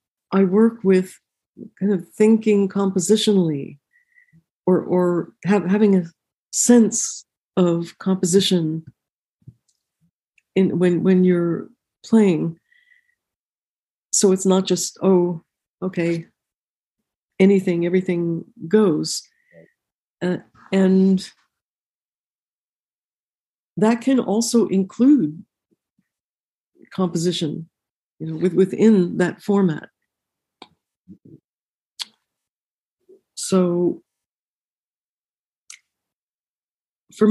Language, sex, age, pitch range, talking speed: English, female, 60-79, 170-205 Hz, 70 wpm